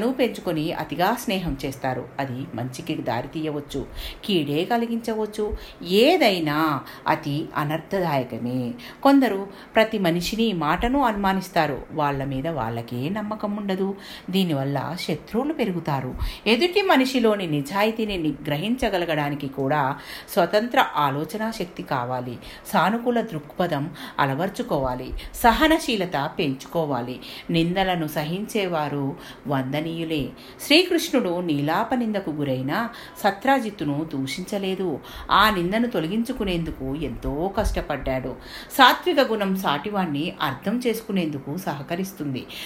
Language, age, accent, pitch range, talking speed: Telugu, 50-69, native, 145-220 Hz, 85 wpm